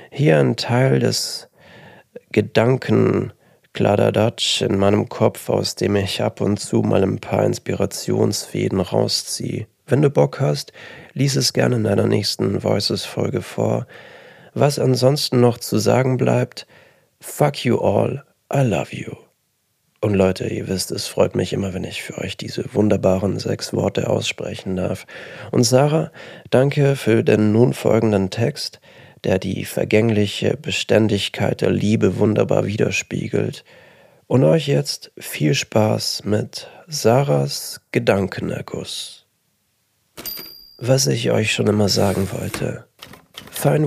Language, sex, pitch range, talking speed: German, male, 100-120 Hz, 125 wpm